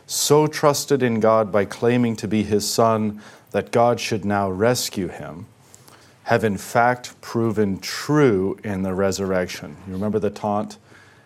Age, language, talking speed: 40-59, English, 150 wpm